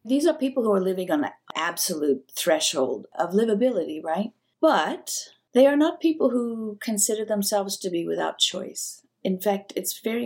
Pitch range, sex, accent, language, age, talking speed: 180-210 Hz, female, American, English, 50-69, 170 wpm